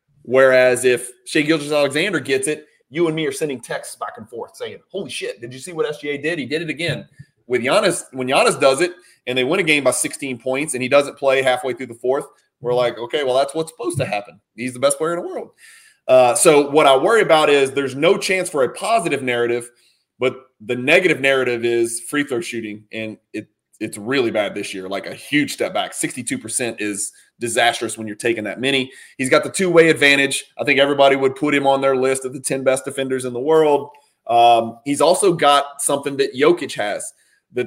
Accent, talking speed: American, 225 wpm